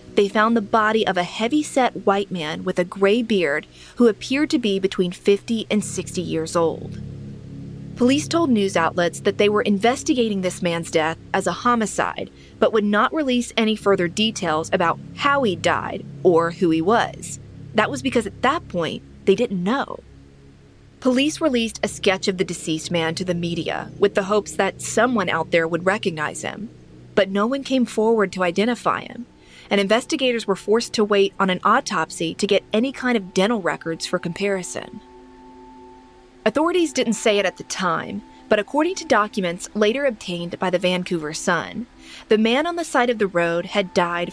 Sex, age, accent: female, 30-49, American